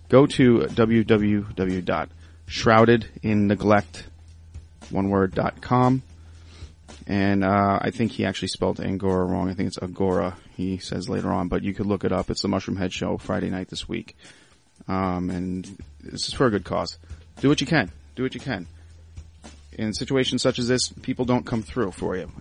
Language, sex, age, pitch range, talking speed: English, male, 30-49, 85-110 Hz, 165 wpm